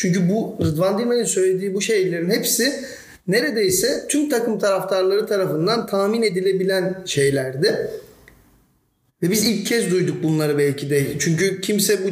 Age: 40-59